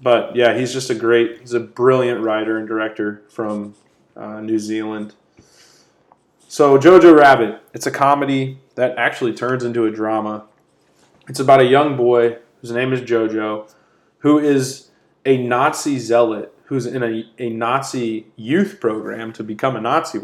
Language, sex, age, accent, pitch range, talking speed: English, male, 20-39, American, 110-135 Hz, 155 wpm